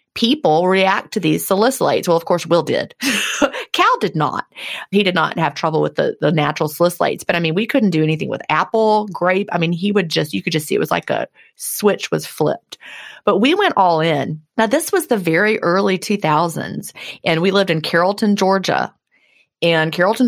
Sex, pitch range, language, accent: female, 160-215 Hz, English, American